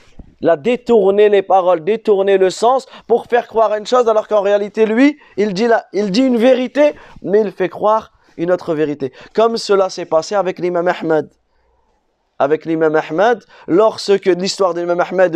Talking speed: 180 wpm